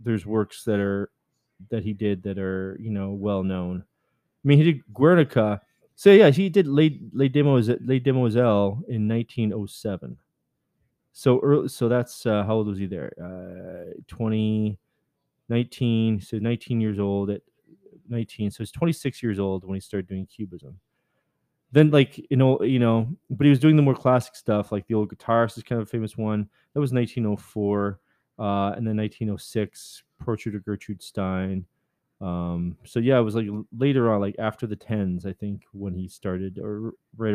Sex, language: male, English